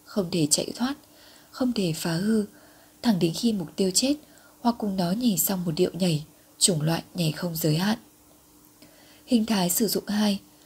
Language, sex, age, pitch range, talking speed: Vietnamese, female, 20-39, 170-225 Hz, 185 wpm